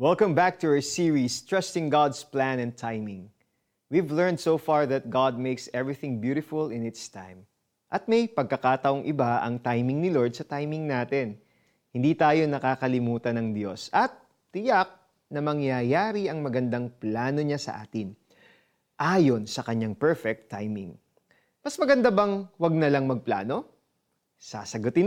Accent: native